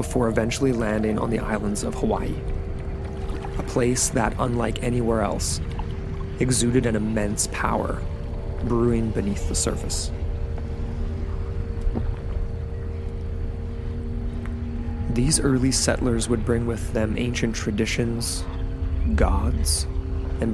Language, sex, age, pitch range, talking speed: English, male, 20-39, 80-115 Hz, 95 wpm